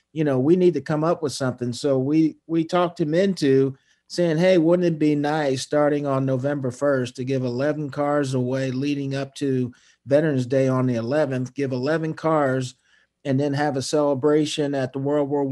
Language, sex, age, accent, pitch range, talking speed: English, male, 50-69, American, 130-150 Hz, 195 wpm